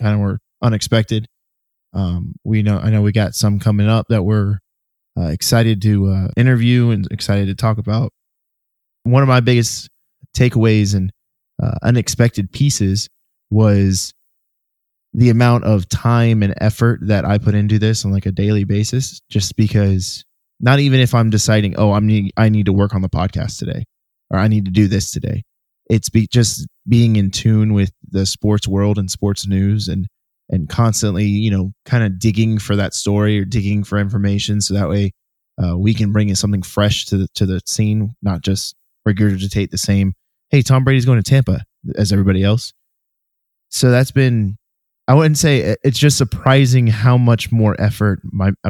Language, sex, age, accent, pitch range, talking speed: English, male, 20-39, American, 100-115 Hz, 180 wpm